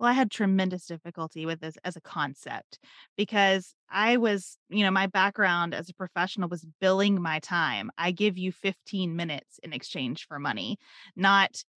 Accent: American